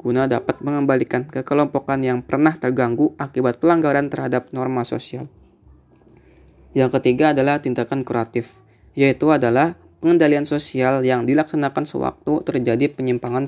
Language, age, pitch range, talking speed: Indonesian, 20-39, 125-140 Hz, 115 wpm